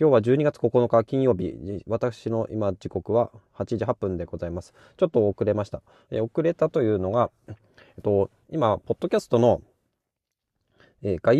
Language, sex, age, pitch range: Japanese, male, 20-39, 100-140 Hz